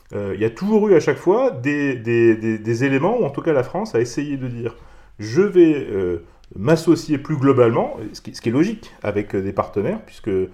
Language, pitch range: French, 105-140 Hz